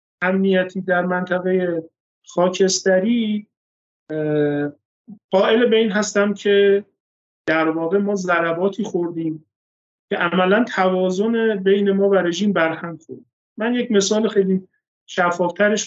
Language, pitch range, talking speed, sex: Persian, 170-205 Hz, 100 wpm, male